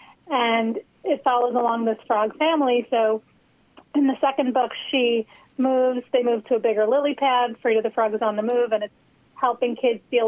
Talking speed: 195 wpm